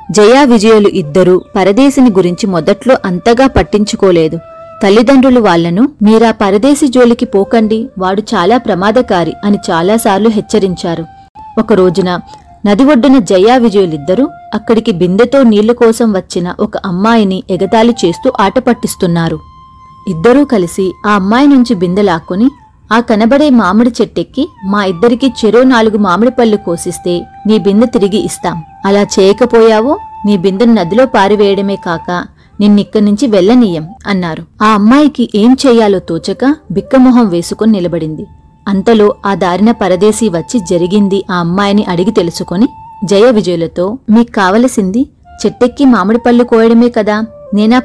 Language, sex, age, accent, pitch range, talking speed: Telugu, female, 30-49, native, 190-240 Hz, 120 wpm